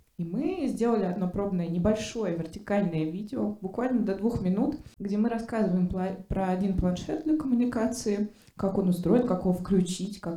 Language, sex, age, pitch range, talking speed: Russian, female, 20-39, 180-225 Hz, 155 wpm